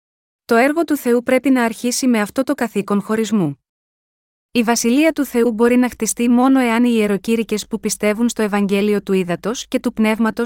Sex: female